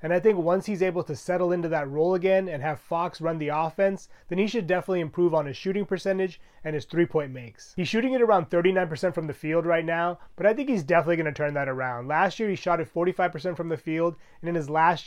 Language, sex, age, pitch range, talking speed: English, male, 30-49, 155-190 Hz, 250 wpm